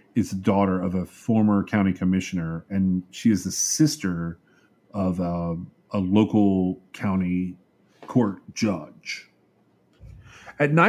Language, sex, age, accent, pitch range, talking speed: English, male, 40-59, American, 95-135 Hz, 115 wpm